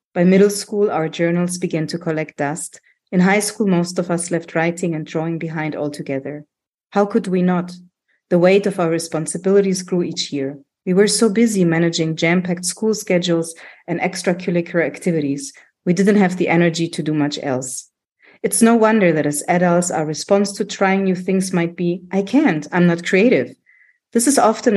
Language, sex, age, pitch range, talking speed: English, female, 30-49, 160-195 Hz, 185 wpm